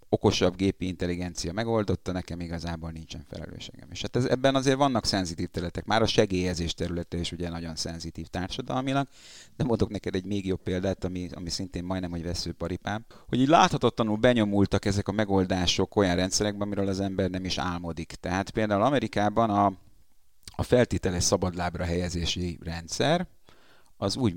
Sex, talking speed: male, 160 wpm